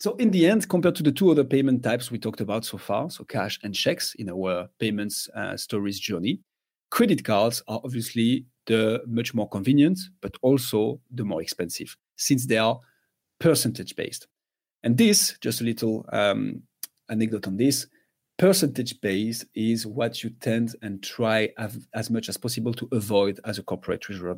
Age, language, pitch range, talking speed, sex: 40-59, English, 110-140 Hz, 175 wpm, male